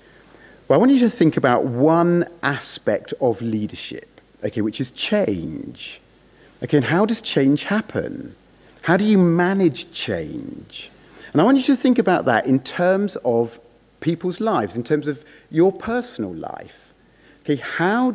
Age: 40-59